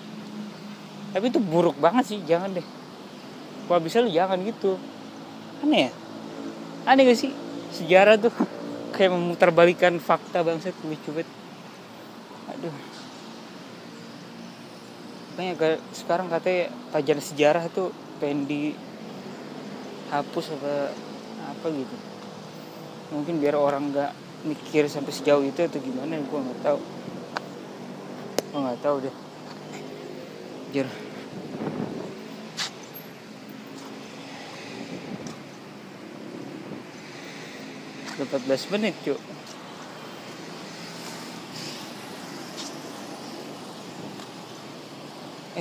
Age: 20-39